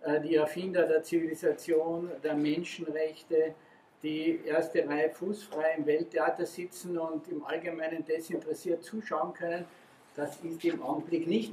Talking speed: 125 wpm